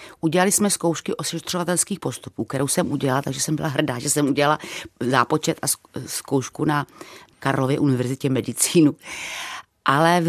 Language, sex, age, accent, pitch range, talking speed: Czech, female, 40-59, native, 150-180 Hz, 140 wpm